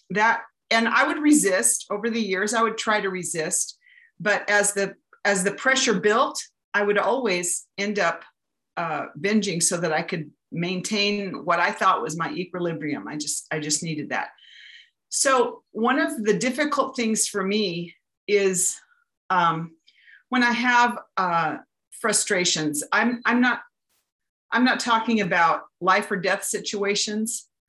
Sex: female